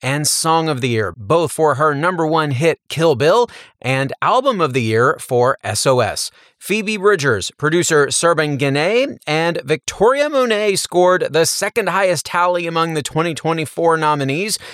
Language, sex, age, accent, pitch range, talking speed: English, male, 30-49, American, 135-180 Hz, 150 wpm